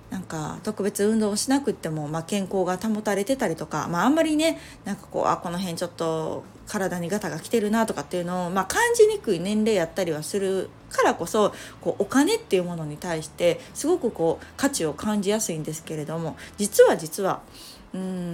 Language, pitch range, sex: Japanese, 170-250 Hz, female